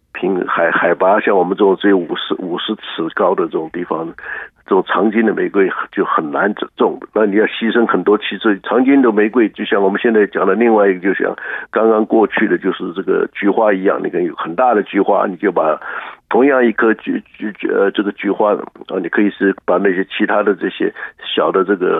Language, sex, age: Chinese, male, 60-79